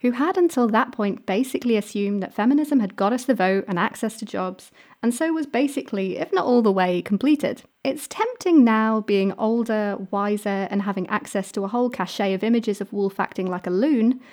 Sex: female